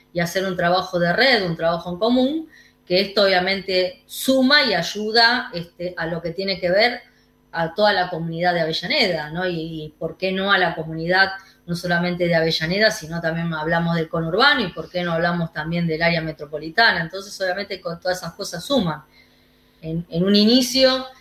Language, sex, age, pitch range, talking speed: Spanish, female, 20-39, 170-210 Hz, 190 wpm